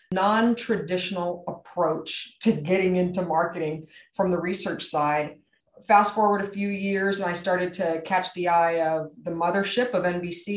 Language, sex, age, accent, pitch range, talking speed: English, female, 30-49, American, 165-220 Hz, 155 wpm